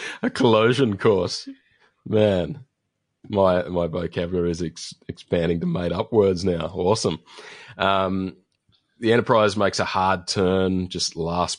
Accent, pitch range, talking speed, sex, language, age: Australian, 85-95 Hz, 120 wpm, male, English, 30-49